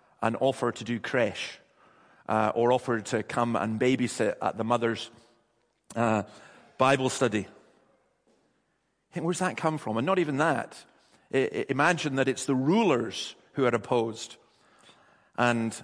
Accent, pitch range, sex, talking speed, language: British, 115-140 Hz, male, 130 wpm, English